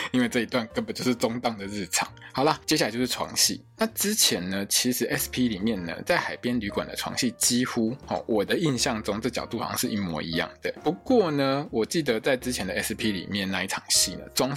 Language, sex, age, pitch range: Chinese, male, 20-39, 110-150 Hz